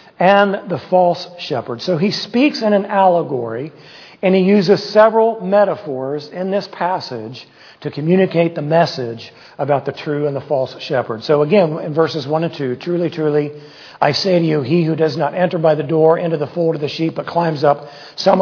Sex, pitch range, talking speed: male, 145-190 Hz, 195 wpm